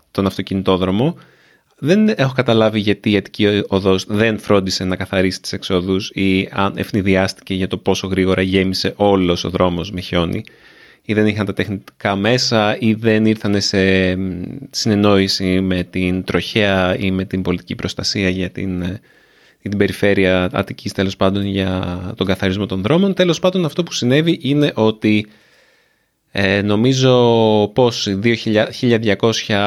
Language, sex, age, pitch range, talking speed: Greek, male, 30-49, 95-115 Hz, 140 wpm